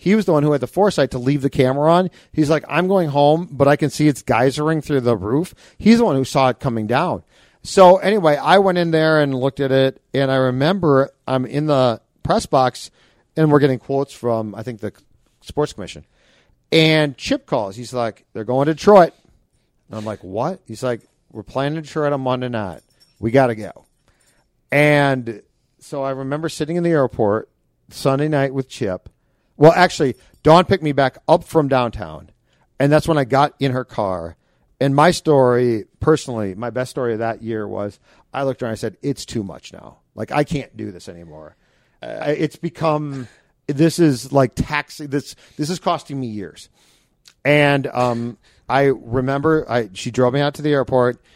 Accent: American